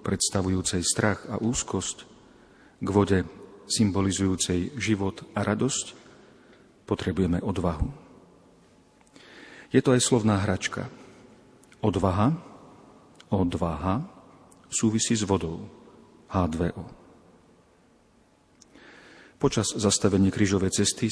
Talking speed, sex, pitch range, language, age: 75 wpm, male, 95-110 Hz, Slovak, 40-59